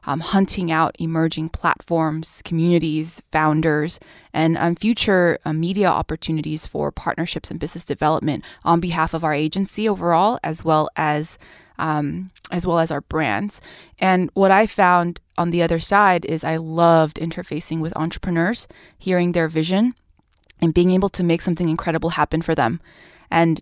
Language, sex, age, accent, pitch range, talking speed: English, female, 20-39, American, 155-175 Hz, 155 wpm